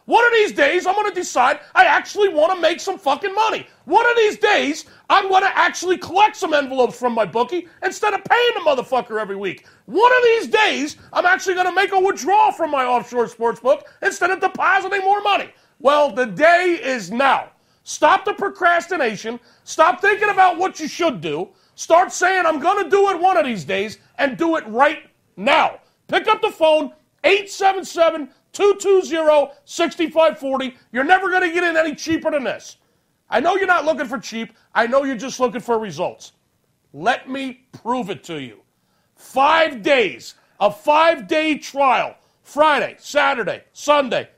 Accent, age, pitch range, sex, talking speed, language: American, 40-59, 270-375 Hz, male, 190 wpm, English